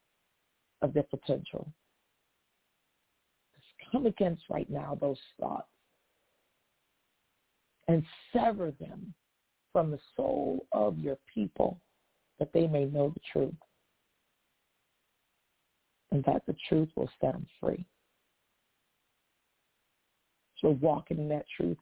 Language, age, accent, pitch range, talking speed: English, 50-69, American, 150-195 Hz, 100 wpm